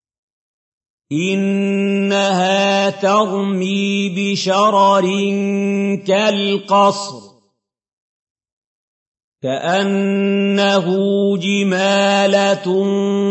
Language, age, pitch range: Arabic, 50-69, 195-200 Hz